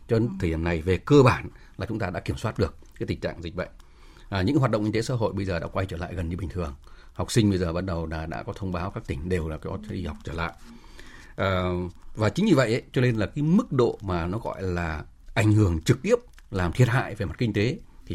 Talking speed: 280 wpm